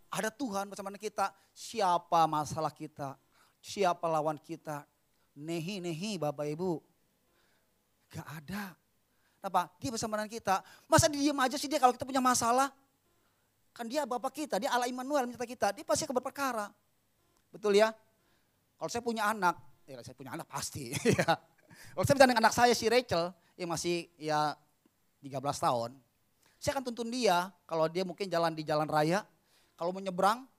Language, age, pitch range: Indonesian, 30-49, 165-230 Hz